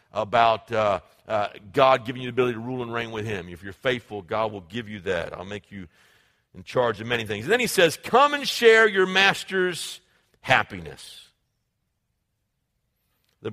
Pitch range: 120-160 Hz